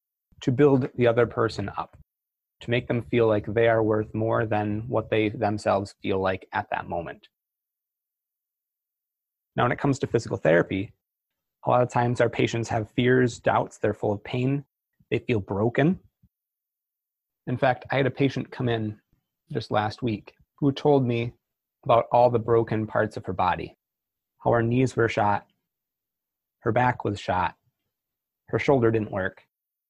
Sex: male